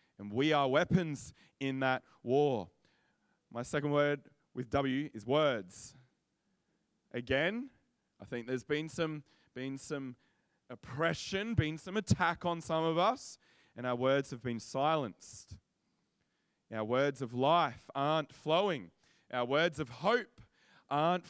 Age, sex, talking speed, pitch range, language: 20-39, male, 130 wpm, 130-175 Hz, English